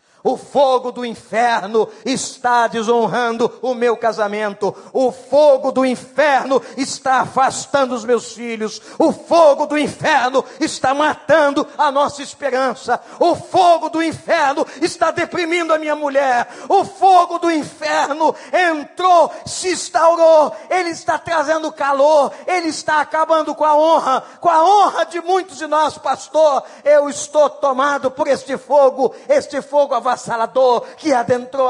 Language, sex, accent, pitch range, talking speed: Portuguese, male, Brazilian, 225-295 Hz, 140 wpm